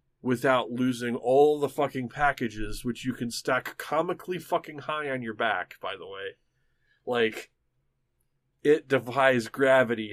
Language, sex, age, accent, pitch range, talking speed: English, male, 30-49, American, 115-140 Hz, 135 wpm